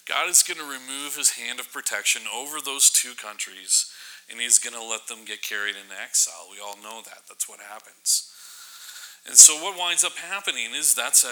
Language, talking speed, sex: English, 205 wpm, male